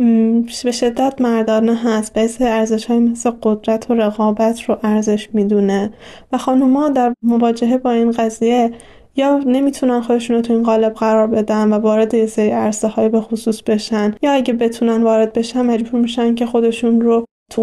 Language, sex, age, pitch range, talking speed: Persian, female, 10-29, 210-235 Hz, 170 wpm